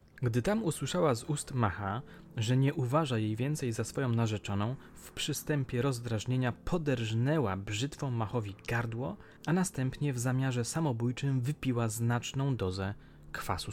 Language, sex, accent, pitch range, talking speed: Polish, male, native, 100-140 Hz, 130 wpm